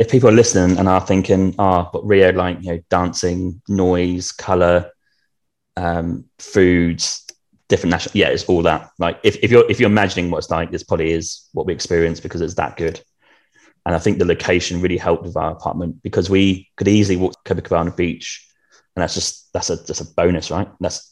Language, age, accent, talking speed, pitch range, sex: English, 20-39, British, 205 wpm, 85-95 Hz, male